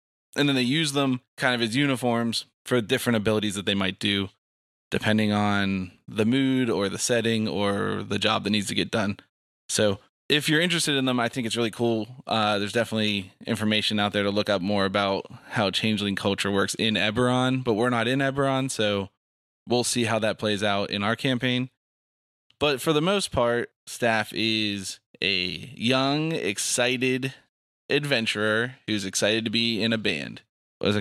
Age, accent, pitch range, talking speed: 20-39, American, 105-130 Hz, 180 wpm